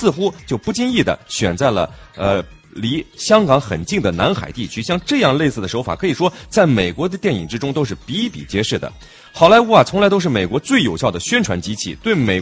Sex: male